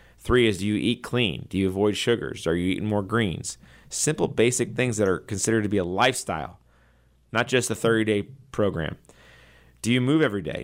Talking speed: 195 wpm